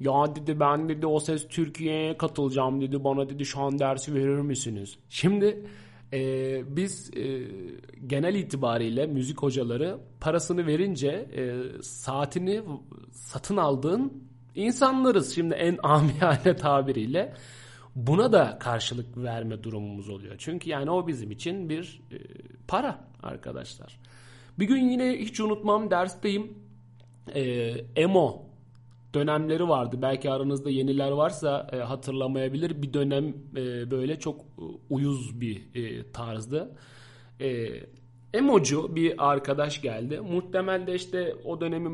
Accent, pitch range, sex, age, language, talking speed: native, 125-165 Hz, male, 40-59, Turkish, 125 wpm